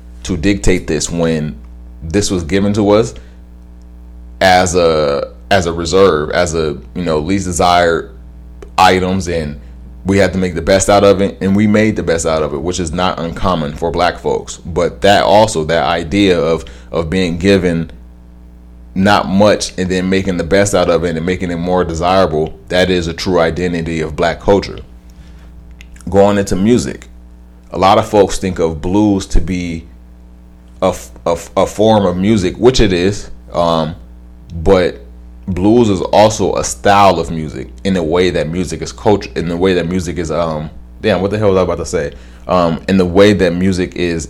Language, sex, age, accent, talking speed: English, male, 30-49, American, 185 wpm